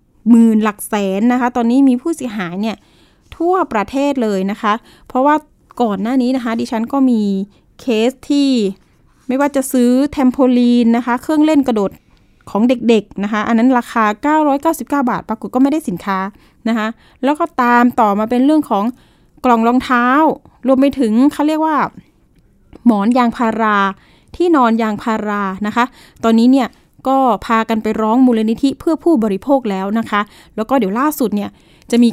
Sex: female